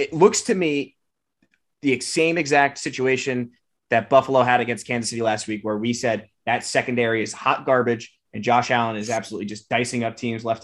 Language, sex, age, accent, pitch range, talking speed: English, male, 20-39, American, 115-145 Hz, 190 wpm